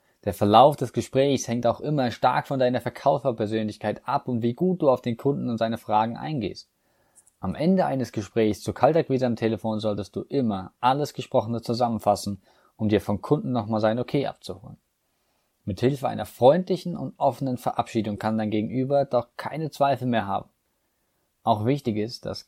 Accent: German